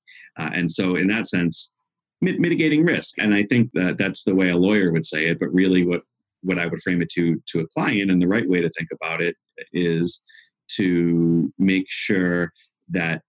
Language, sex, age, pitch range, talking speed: English, male, 40-59, 80-95 Hz, 200 wpm